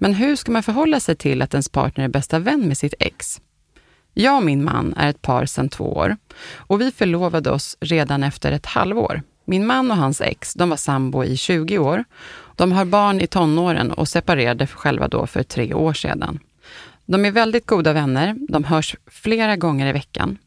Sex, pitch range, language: female, 140-185 Hz, Swedish